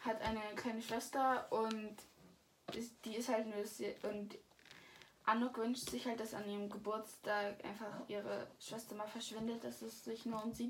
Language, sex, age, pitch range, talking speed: German, female, 10-29, 205-235 Hz, 165 wpm